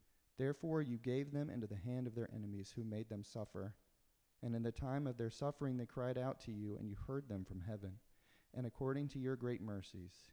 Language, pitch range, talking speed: English, 95-125 Hz, 220 wpm